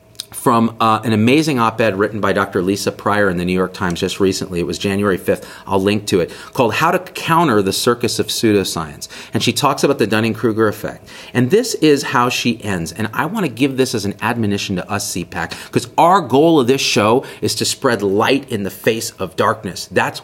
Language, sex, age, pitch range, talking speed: English, male, 40-59, 100-135 Hz, 220 wpm